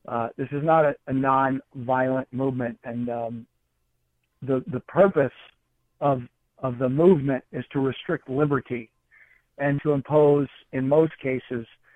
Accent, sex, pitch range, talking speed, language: American, male, 130-150 Hz, 135 wpm, English